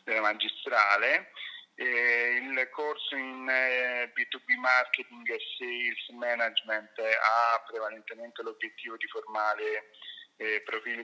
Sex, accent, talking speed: male, native, 80 wpm